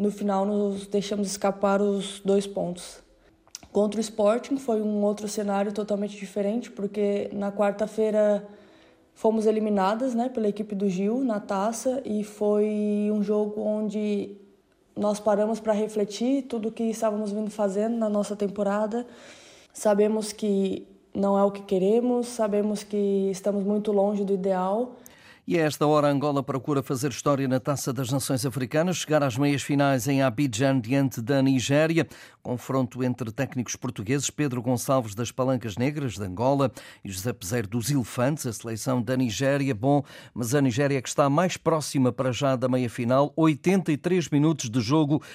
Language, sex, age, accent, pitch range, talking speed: Portuguese, female, 20-39, Brazilian, 135-205 Hz, 160 wpm